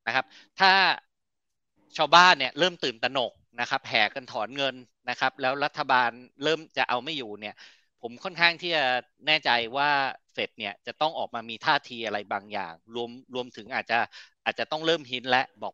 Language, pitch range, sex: Thai, 120-155 Hz, male